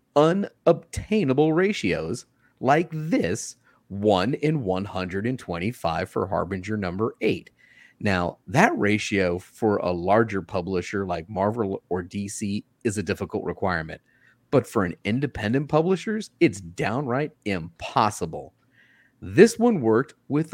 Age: 30-49